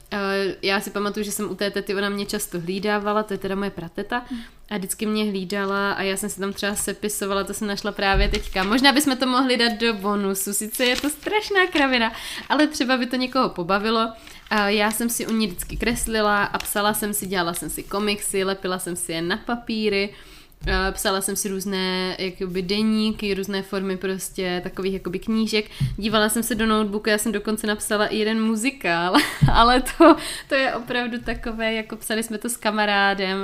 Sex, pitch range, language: female, 190-215 Hz, Czech